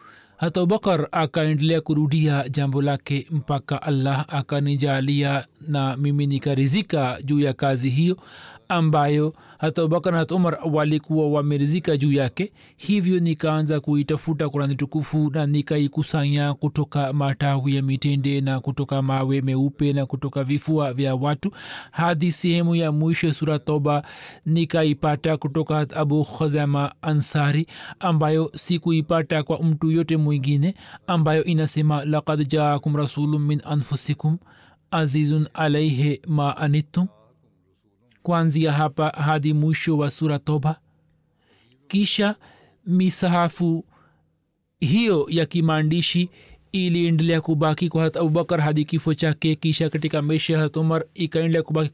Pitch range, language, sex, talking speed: 145-165 Hz, Swahili, male, 105 wpm